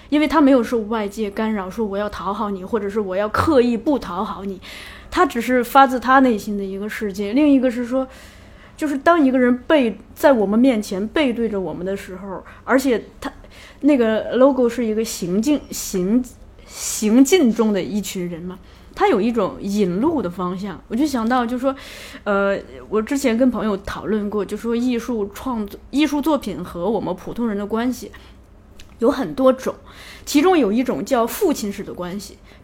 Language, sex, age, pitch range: Chinese, female, 20-39, 205-265 Hz